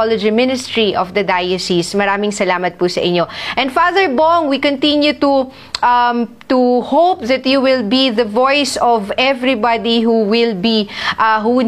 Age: 20-39